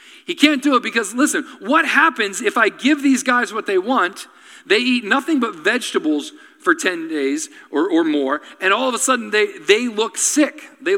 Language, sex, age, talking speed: English, male, 40-59, 200 wpm